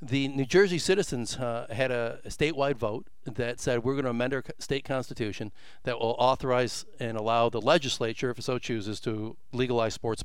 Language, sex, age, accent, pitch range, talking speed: English, male, 50-69, American, 115-160 Hz, 195 wpm